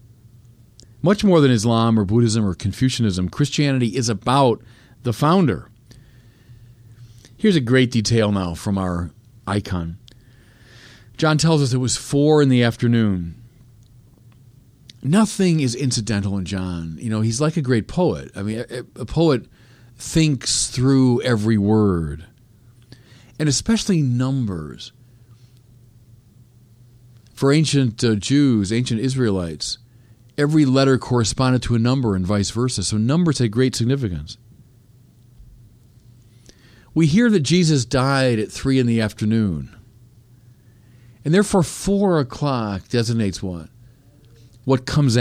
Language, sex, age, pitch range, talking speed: English, male, 40-59, 115-135 Hz, 120 wpm